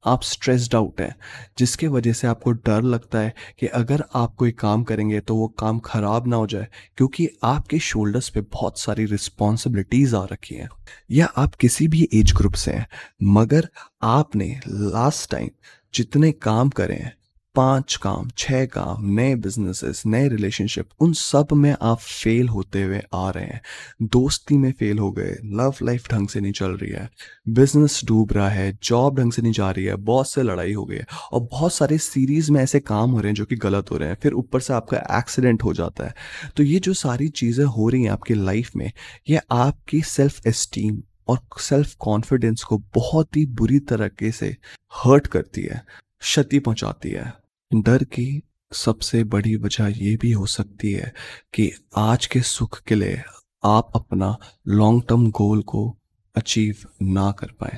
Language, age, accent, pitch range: Hindi, 20-39, native, 105-130 Hz